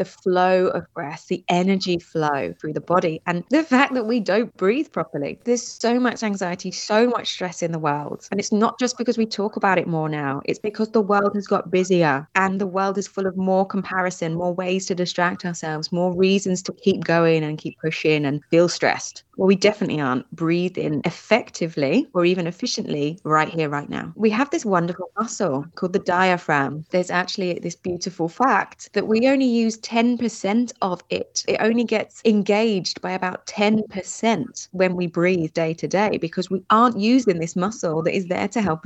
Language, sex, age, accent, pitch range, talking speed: English, female, 20-39, British, 165-205 Hz, 195 wpm